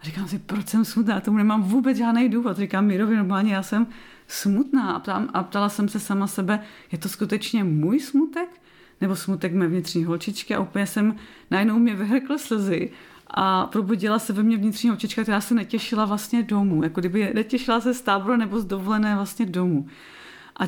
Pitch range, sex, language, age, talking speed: 190-225 Hz, female, Czech, 30-49, 190 wpm